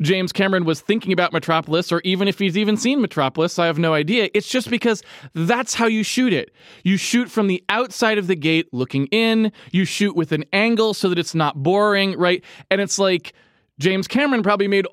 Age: 20-39